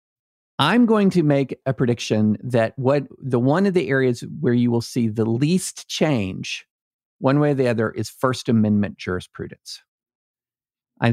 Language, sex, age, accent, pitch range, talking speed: English, male, 50-69, American, 110-140 Hz, 160 wpm